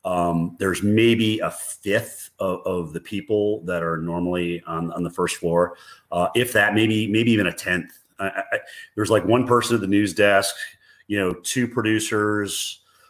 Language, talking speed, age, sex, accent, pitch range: English, 185 wpm, 30-49, male, American, 90-110 Hz